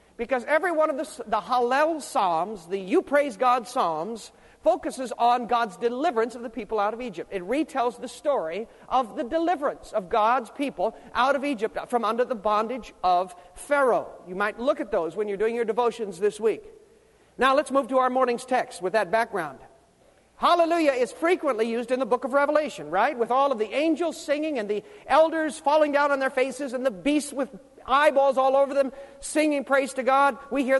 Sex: male